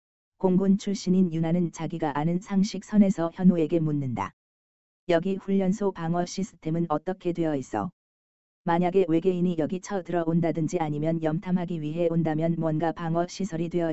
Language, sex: Korean, female